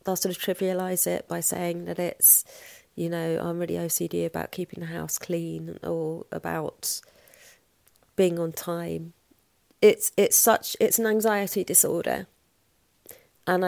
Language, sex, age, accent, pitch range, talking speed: English, female, 30-49, British, 170-185 Hz, 140 wpm